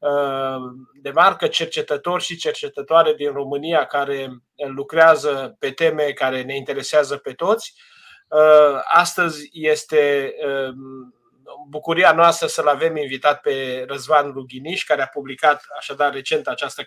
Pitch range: 140-195 Hz